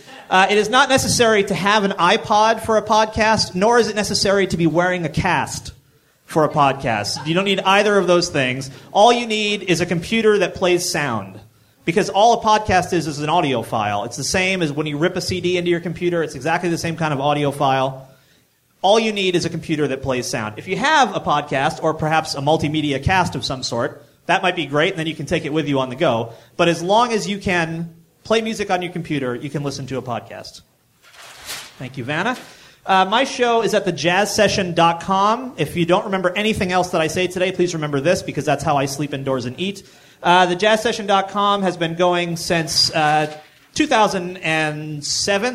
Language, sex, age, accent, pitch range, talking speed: English, male, 30-49, American, 145-195 Hz, 210 wpm